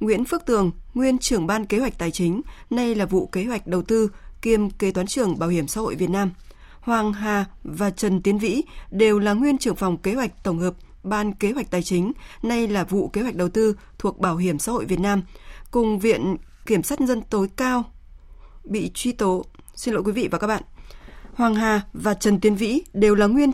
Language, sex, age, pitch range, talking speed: Vietnamese, female, 20-39, 185-235 Hz, 220 wpm